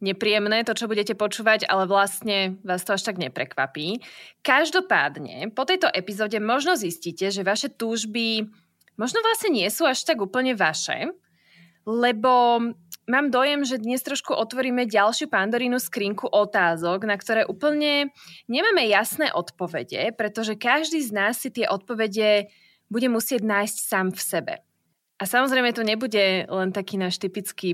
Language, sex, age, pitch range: Slovak, female, 20-39, 185-245 Hz